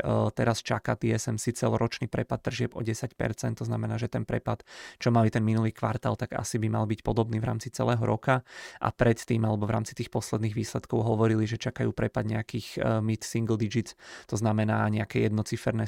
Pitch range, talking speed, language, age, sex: 110-120 Hz, 180 wpm, Czech, 30-49, male